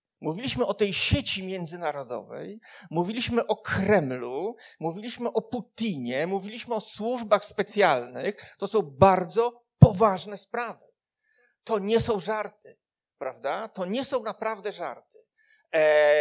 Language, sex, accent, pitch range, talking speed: Polish, male, native, 205-295 Hz, 115 wpm